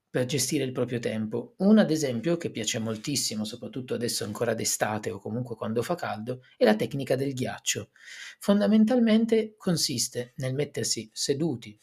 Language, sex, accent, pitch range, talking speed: Italian, male, native, 120-175 Hz, 150 wpm